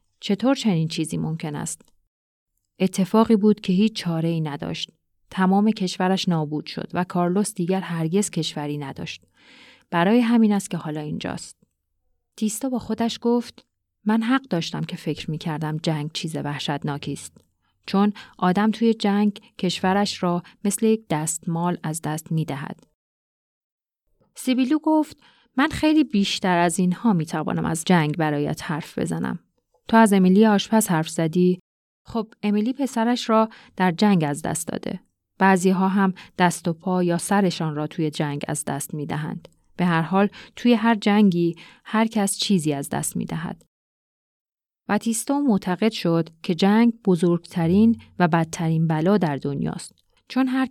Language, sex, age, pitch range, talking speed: Persian, female, 30-49, 160-215 Hz, 145 wpm